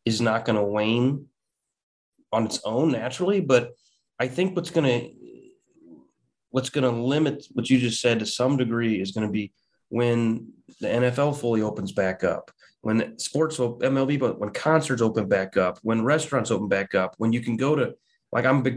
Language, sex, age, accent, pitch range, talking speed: English, male, 30-49, American, 115-145 Hz, 200 wpm